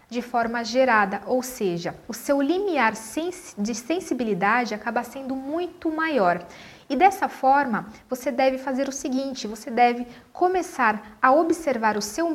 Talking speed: 140 wpm